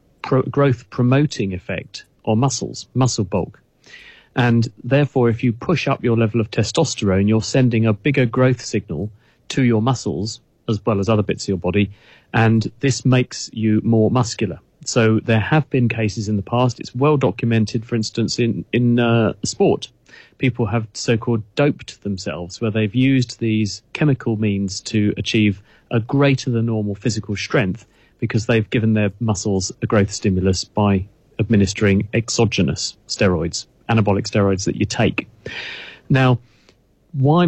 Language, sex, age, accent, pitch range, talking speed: English, male, 40-59, British, 105-125 Hz, 150 wpm